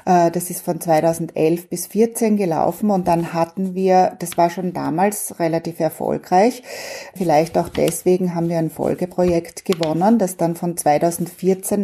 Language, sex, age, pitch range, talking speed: German, female, 30-49, 170-190 Hz, 145 wpm